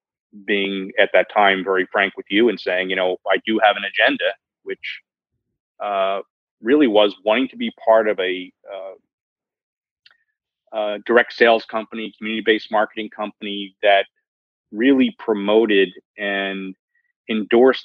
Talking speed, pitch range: 135 wpm, 100-115 Hz